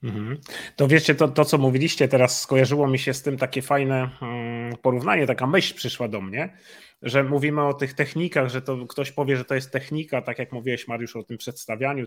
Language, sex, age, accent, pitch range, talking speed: Polish, male, 30-49, native, 125-145 Hz, 200 wpm